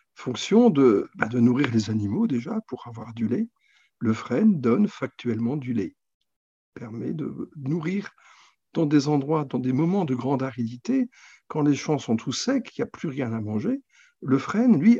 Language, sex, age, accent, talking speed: French, male, 50-69, French, 190 wpm